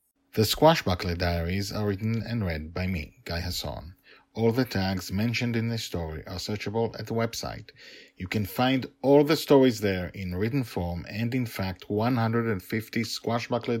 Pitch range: 90-115 Hz